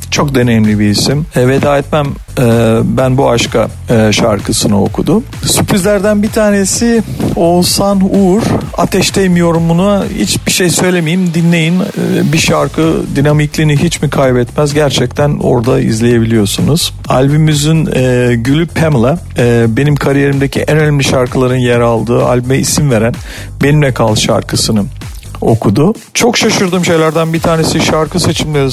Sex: male